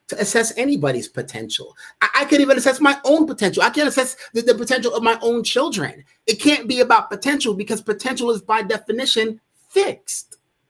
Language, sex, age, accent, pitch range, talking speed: English, male, 30-49, American, 160-230 Hz, 185 wpm